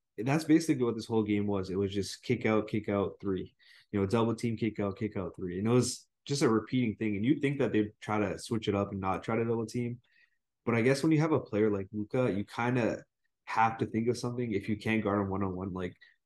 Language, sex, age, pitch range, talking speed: English, male, 20-39, 100-125 Hz, 270 wpm